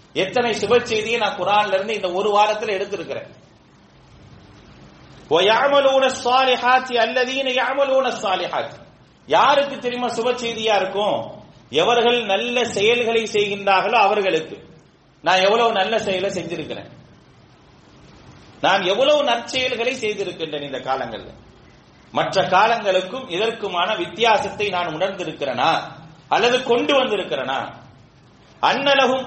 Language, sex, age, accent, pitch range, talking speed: English, male, 30-49, Indian, 185-245 Hz, 90 wpm